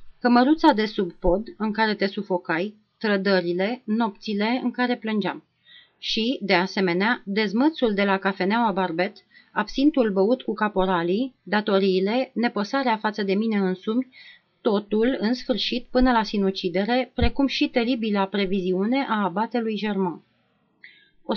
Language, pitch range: Romanian, 190-245 Hz